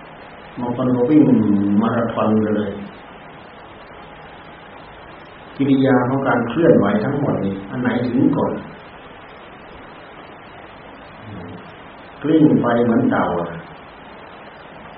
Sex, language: male, Thai